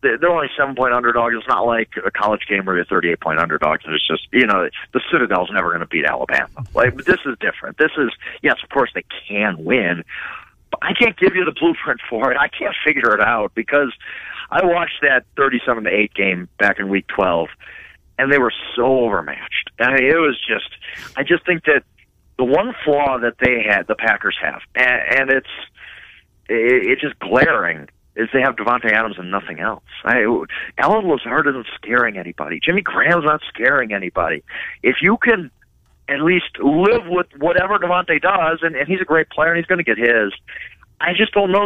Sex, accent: male, American